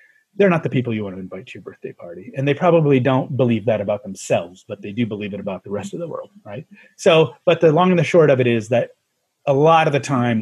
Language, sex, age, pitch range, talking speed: English, male, 30-49, 110-150 Hz, 275 wpm